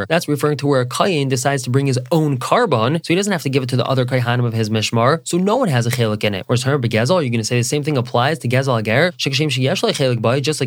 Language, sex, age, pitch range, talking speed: English, male, 20-39, 125-160 Hz, 285 wpm